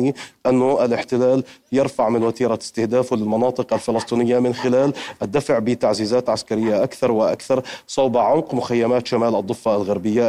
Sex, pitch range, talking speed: male, 115-130 Hz, 120 wpm